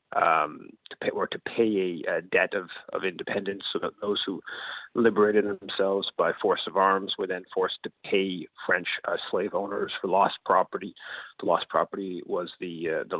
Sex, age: male, 30-49